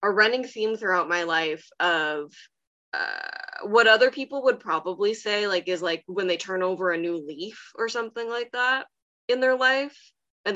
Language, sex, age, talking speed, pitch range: English, female, 20-39, 180 wpm, 165-215 Hz